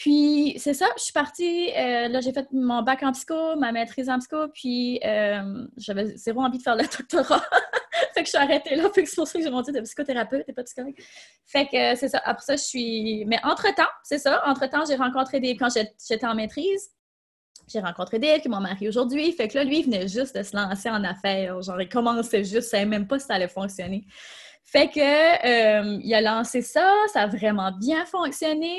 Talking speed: 225 wpm